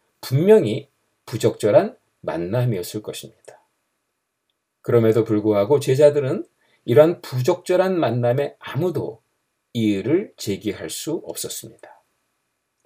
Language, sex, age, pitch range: Korean, male, 50-69, 115-165 Hz